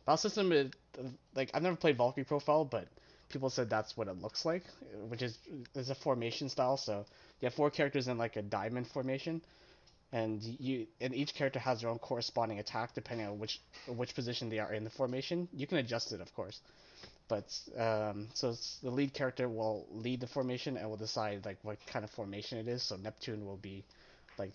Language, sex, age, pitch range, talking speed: English, male, 20-39, 110-140 Hz, 205 wpm